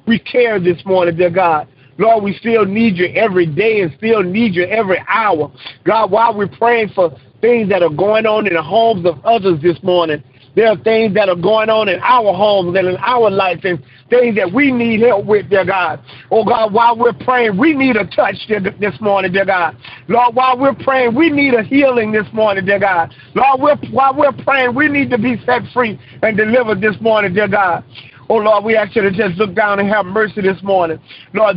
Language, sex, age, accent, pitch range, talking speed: English, male, 50-69, American, 175-225 Hz, 220 wpm